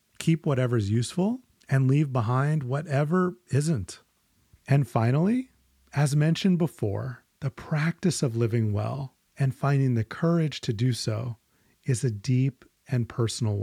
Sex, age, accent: male, 30-49, American